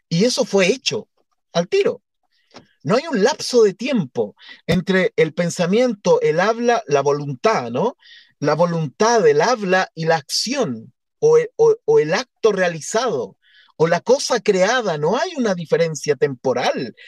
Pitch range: 195-260 Hz